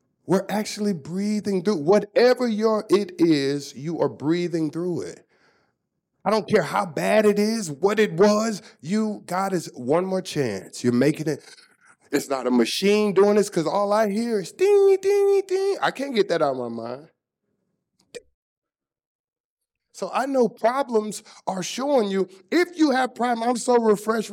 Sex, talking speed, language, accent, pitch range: male, 170 wpm, English, American, 175-245 Hz